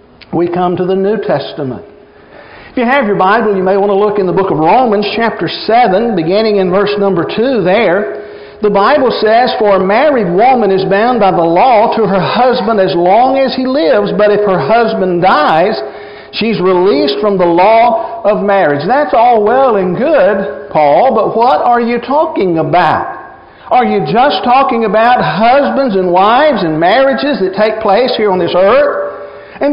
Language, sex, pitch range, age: English, male, 190-240 Hz, 50-69